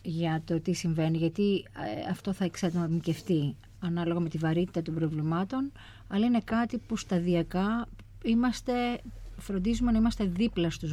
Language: Greek